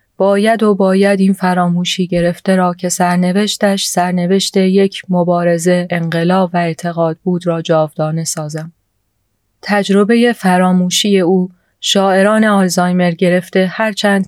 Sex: female